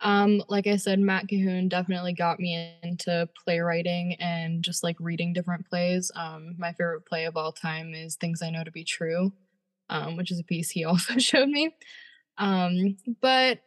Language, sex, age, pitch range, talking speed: English, female, 20-39, 170-190 Hz, 185 wpm